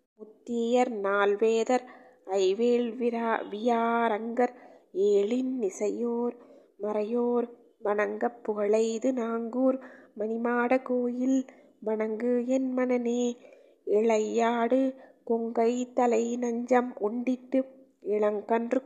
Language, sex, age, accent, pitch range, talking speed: Tamil, female, 20-39, native, 230-255 Hz, 65 wpm